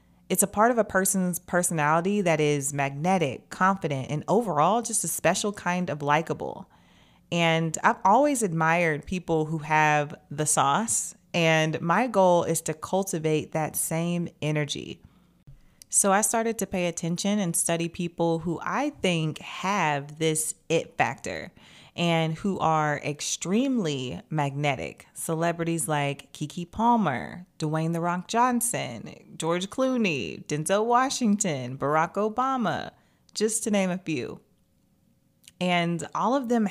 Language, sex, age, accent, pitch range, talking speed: English, female, 30-49, American, 155-195 Hz, 130 wpm